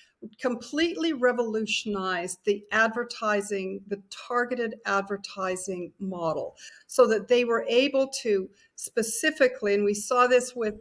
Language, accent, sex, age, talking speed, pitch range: English, American, female, 50-69, 110 wpm, 205-250 Hz